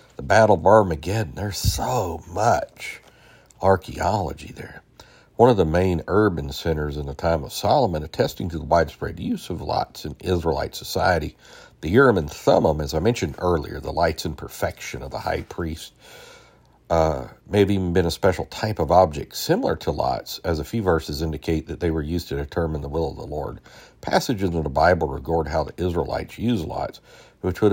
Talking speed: 185 wpm